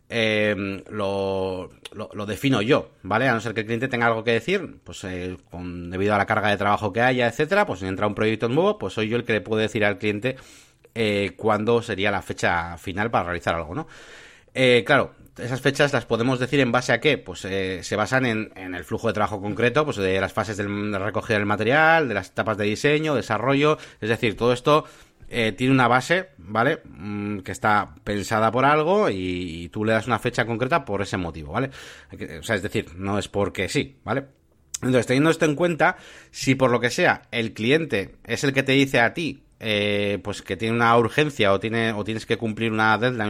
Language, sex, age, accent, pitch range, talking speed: Spanish, male, 30-49, Spanish, 100-125 Hz, 225 wpm